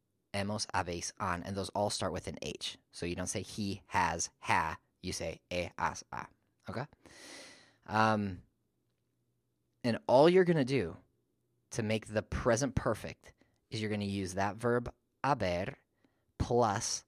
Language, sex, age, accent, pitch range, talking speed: English, male, 20-39, American, 95-110 Hz, 155 wpm